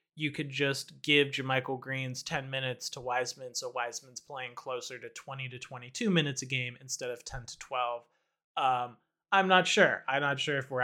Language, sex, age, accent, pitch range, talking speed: English, male, 20-39, American, 140-185 Hz, 195 wpm